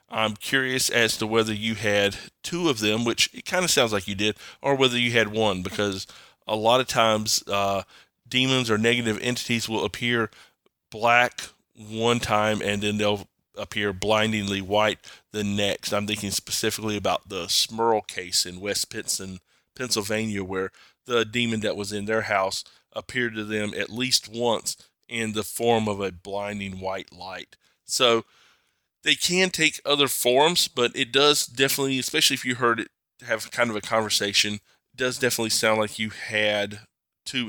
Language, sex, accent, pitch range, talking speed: English, male, American, 105-120 Hz, 170 wpm